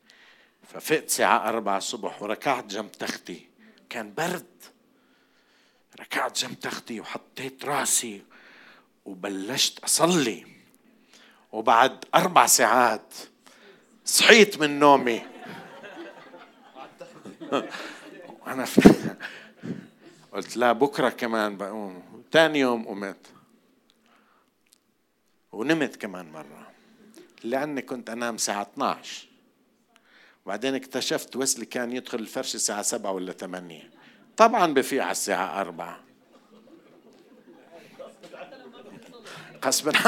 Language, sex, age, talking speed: Arabic, male, 50-69, 80 wpm